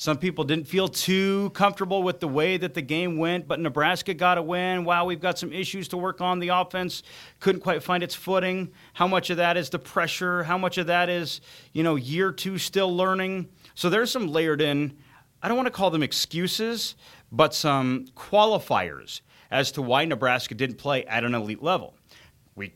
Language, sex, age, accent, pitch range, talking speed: English, male, 30-49, American, 130-185 Hz, 205 wpm